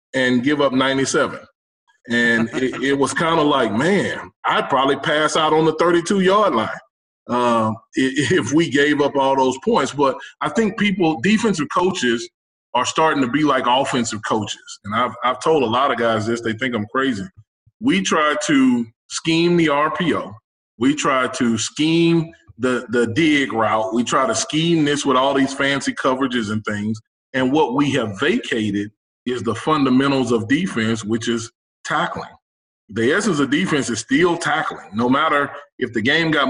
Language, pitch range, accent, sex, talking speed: English, 115-160 Hz, American, male, 175 wpm